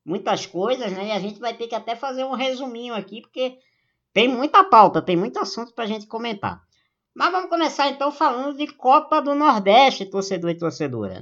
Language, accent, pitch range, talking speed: Portuguese, Brazilian, 150-235 Hz, 200 wpm